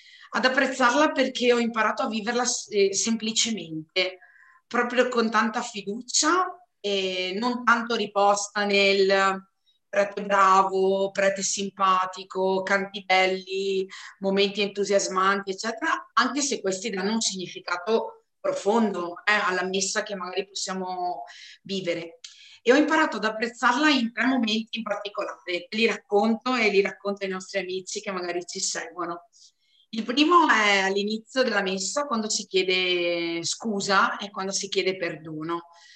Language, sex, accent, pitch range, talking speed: Italian, female, native, 190-230 Hz, 130 wpm